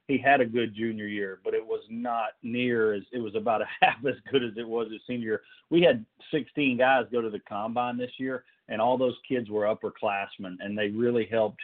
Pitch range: 105-125 Hz